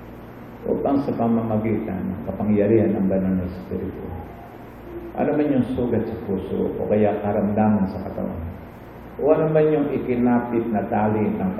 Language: English